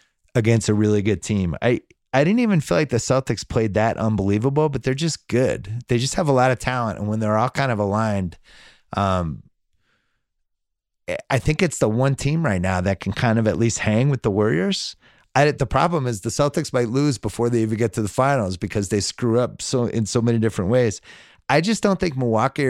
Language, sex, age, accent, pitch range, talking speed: English, male, 30-49, American, 100-130 Hz, 220 wpm